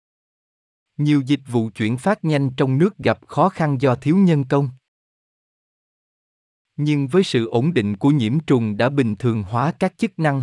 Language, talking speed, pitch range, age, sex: Vietnamese, 175 wpm, 110-155 Hz, 20-39, male